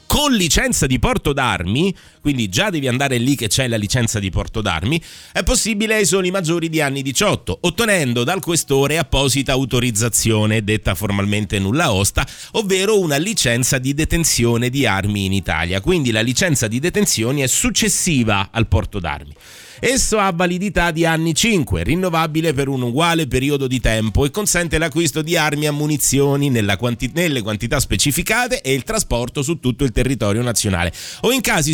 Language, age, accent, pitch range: Italian, 30-49, native, 115-180 Hz